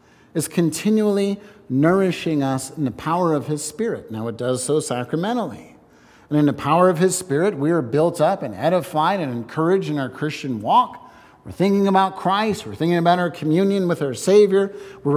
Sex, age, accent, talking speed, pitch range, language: male, 50-69, American, 185 wpm, 145-195 Hz, English